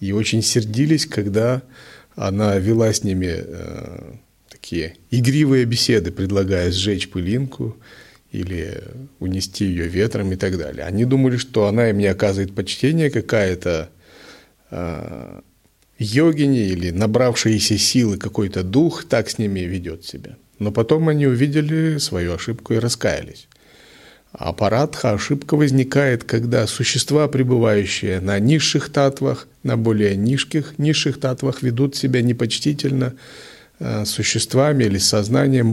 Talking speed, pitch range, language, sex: 125 wpm, 105-135 Hz, Russian, male